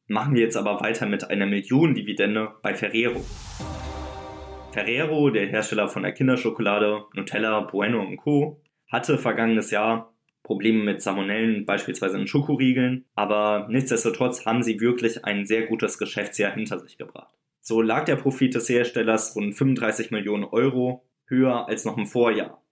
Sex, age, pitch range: male, 20-39, 110-130 Hz